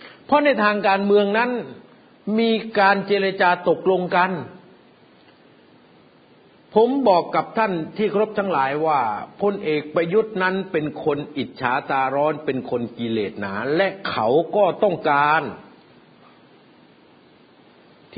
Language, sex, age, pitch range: Thai, male, 60-79, 150-215 Hz